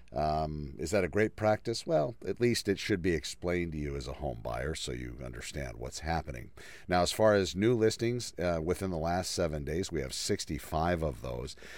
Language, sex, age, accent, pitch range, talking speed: English, male, 50-69, American, 75-95 Hz, 210 wpm